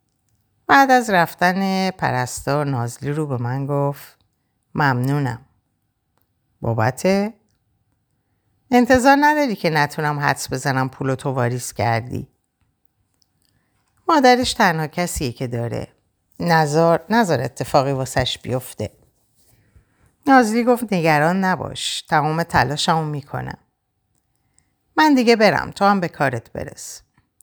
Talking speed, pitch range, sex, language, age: 105 wpm, 125-205 Hz, female, Persian, 50-69